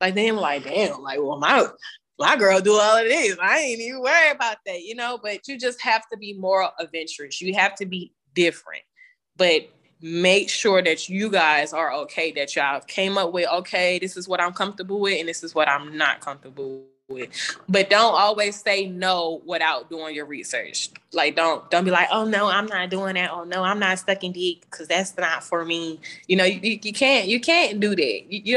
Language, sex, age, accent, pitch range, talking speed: English, female, 20-39, American, 175-225 Hz, 220 wpm